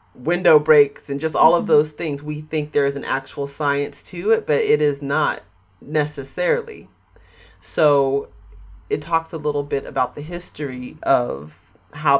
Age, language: 30-49, English